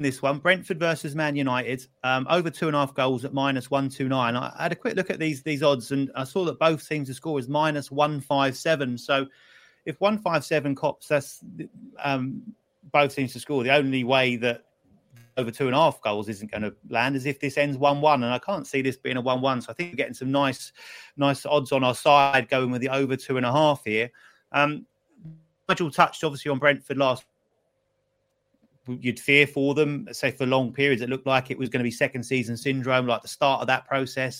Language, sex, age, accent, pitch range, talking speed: English, male, 30-49, British, 130-150 Hz, 230 wpm